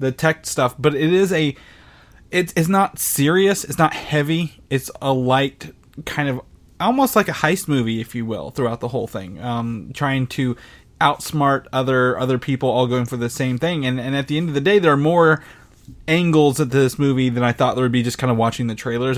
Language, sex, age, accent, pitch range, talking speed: English, male, 20-39, American, 120-150 Hz, 220 wpm